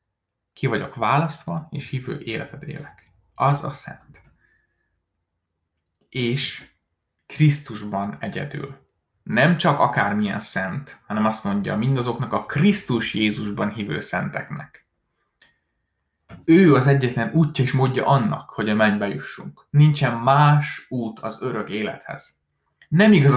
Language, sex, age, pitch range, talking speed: Hungarian, male, 20-39, 110-150 Hz, 115 wpm